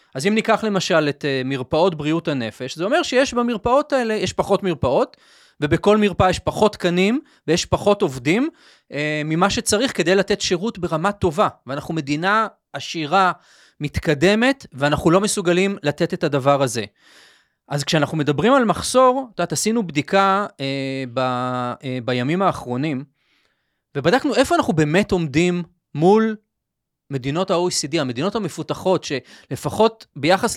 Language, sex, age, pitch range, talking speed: Hebrew, male, 30-49, 150-210 Hz, 135 wpm